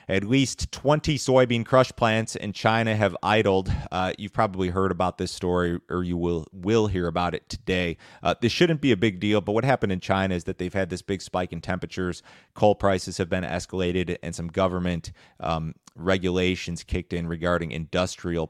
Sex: male